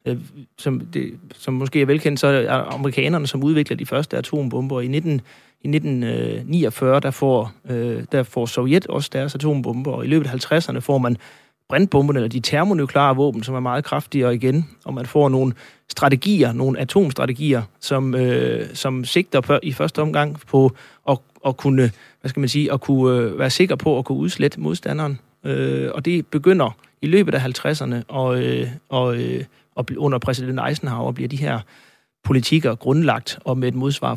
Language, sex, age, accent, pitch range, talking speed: Danish, male, 30-49, native, 125-150 Hz, 170 wpm